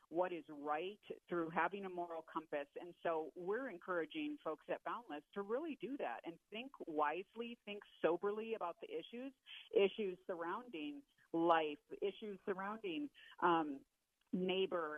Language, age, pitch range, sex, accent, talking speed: English, 40-59, 165-210 Hz, female, American, 135 wpm